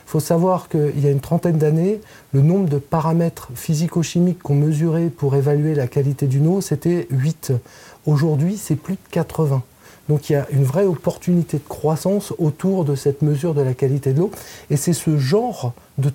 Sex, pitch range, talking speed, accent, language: male, 140-165 Hz, 190 wpm, French, French